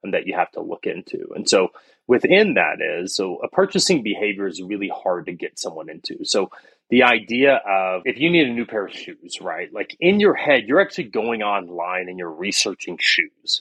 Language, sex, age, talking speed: English, male, 30-49, 210 wpm